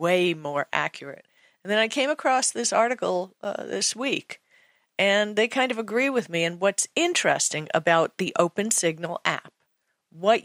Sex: female